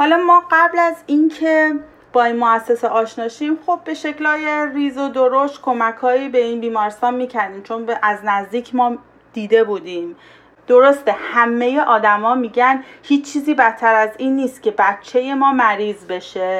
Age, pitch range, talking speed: 30-49, 210-265 Hz, 150 wpm